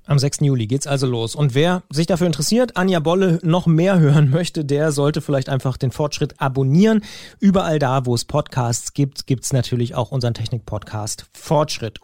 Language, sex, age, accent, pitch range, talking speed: German, male, 30-49, German, 135-175 Hz, 175 wpm